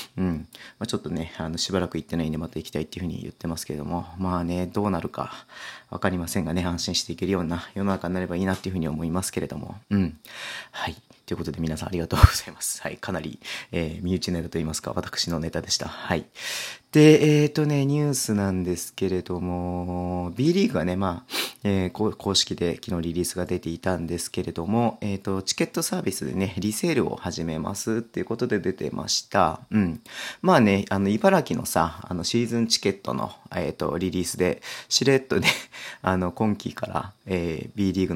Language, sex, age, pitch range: Japanese, male, 30-49, 85-105 Hz